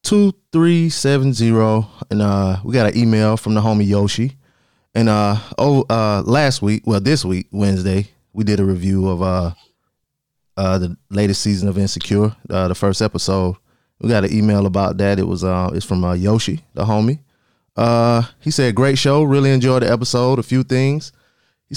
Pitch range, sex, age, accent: 100-125 Hz, male, 20-39, American